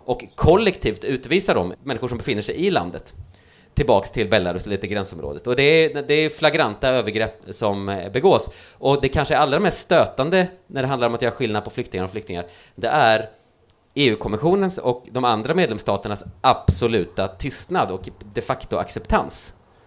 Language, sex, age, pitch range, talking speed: Swedish, male, 30-49, 95-125 Hz, 170 wpm